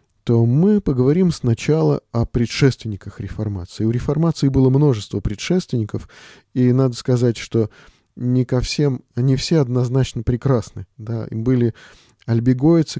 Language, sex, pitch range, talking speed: Russian, male, 110-135 Hz, 125 wpm